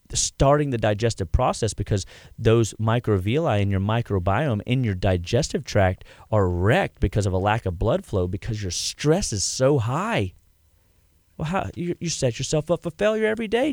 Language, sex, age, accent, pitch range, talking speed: English, male, 30-49, American, 100-150 Hz, 175 wpm